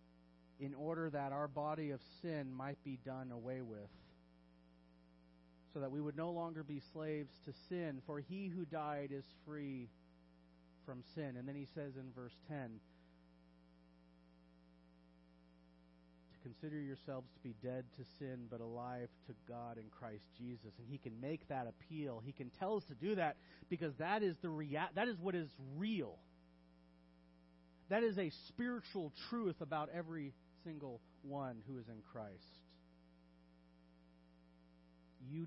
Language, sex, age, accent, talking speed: English, male, 40-59, American, 150 wpm